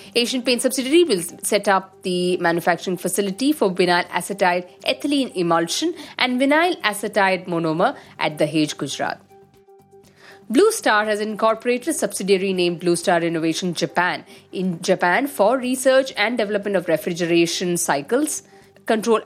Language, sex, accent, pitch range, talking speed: English, female, Indian, 180-235 Hz, 135 wpm